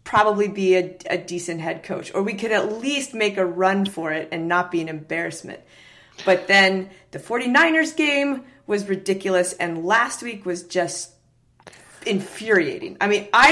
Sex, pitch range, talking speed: female, 180-235 Hz, 170 wpm